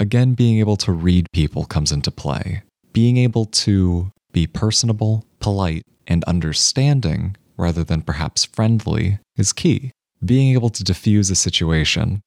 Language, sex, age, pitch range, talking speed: English, male, 20-39, 85-110 Hz, 140 wpm